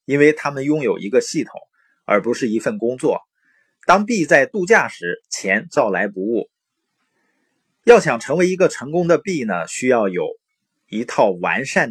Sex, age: male, 30-49